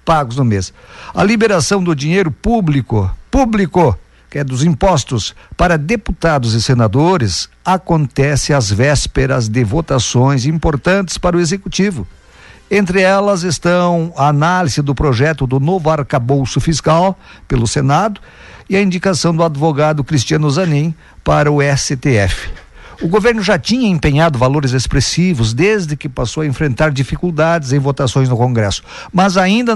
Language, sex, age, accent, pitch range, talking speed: Portuguese, male, 50-69, Brazilian, 135-180 Hz, 135 wpm